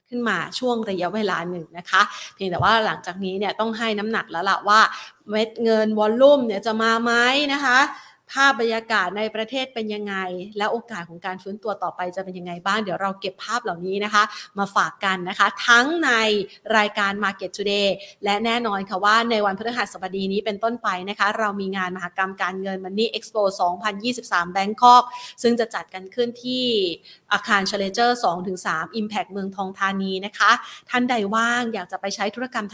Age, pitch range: 30-49, 195-235 Hz